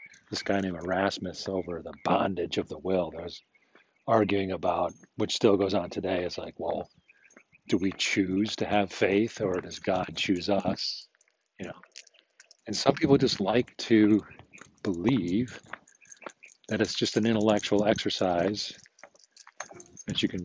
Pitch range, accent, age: 90-110 Hz, American, 40-59